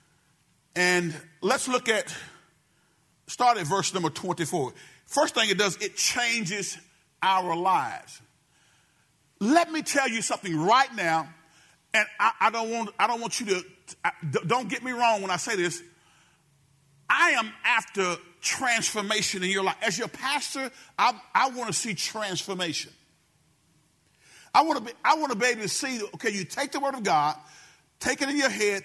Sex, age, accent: male, 40-59, American